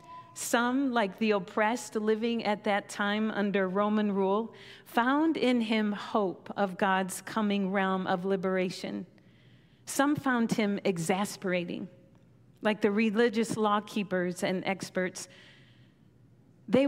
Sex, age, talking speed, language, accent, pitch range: female, 40-59, 115 wpm, English, American, 190-230 Hz